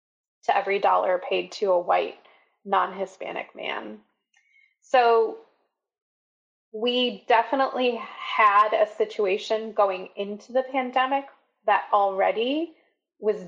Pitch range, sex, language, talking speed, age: 195-270 Hz, female, English, 100 wpm, 20-39